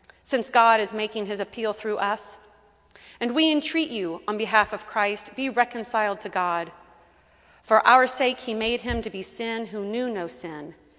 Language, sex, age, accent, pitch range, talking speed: English, female, 40-59, American, 185-245 Hz, 180 wpm